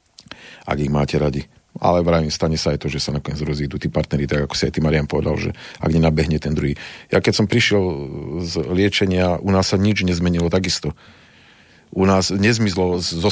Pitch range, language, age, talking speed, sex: 80-95 Hz, Slovak, 40-59, 200 wpm, male